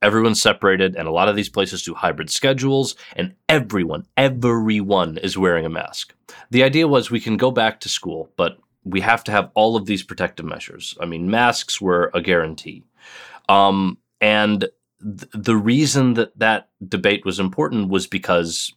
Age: 30-49